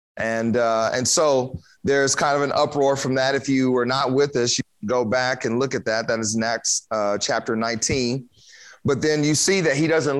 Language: English